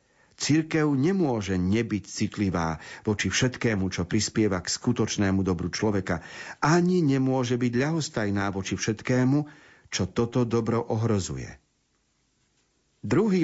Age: 50-69